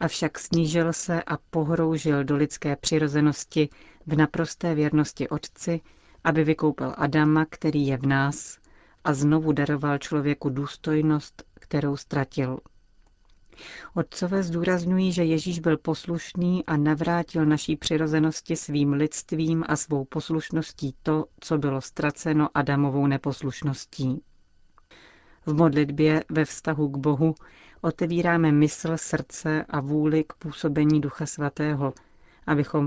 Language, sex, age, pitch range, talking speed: Czech, female, 40-59, 145-160 Hz, 115 wpm